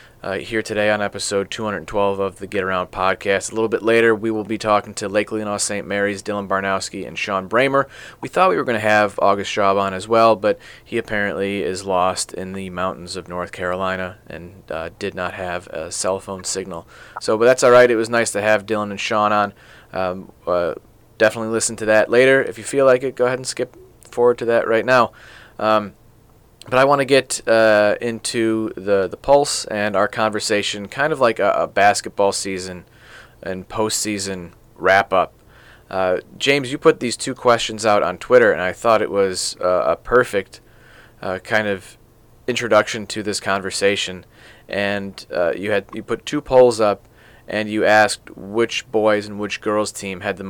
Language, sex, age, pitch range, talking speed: English, male, 30-49, 100-115 Hz, 195 wpm